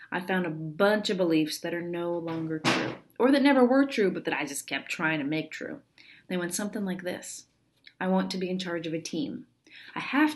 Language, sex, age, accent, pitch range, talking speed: English, female, 30-49, American, 160-215 Hz, 240 wpm